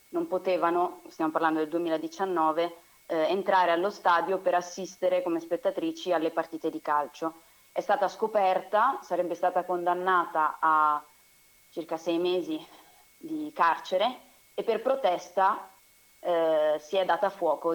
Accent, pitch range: native, 165-190 Hz